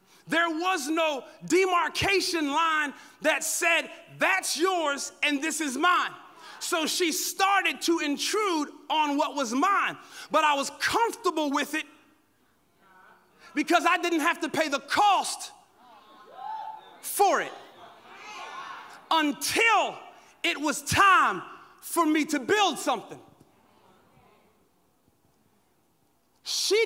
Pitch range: 320-410 Hz